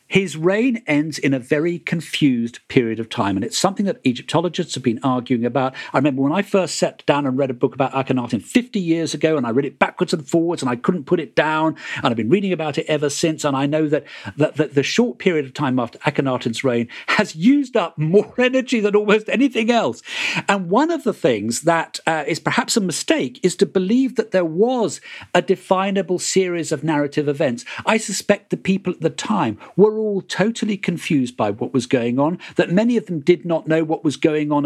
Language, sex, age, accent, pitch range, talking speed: English, male, 50-69, British, 135-200 Hz, 220 wpm